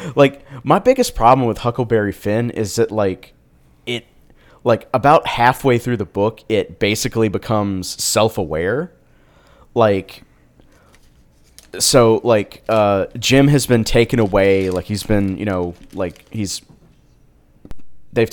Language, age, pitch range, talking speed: English, 30-49, 95-125 Hz, 125 wpm